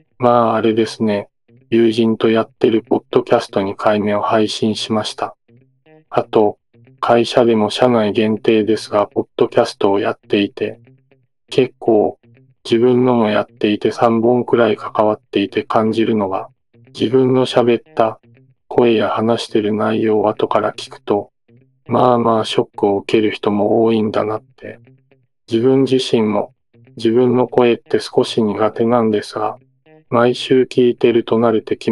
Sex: male